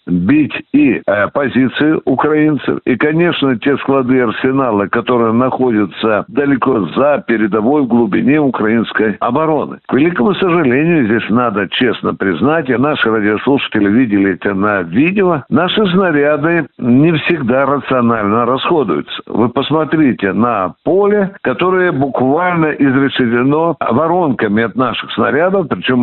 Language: Russian